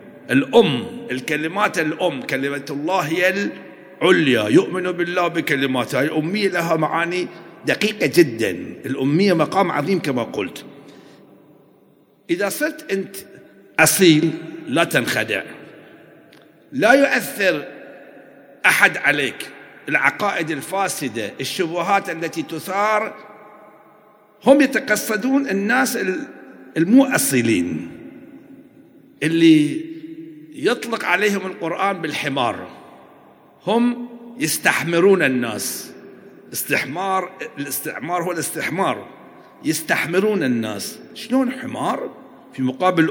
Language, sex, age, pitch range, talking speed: Arabic, male, 50-69, 165-235 Hz, 80 wpm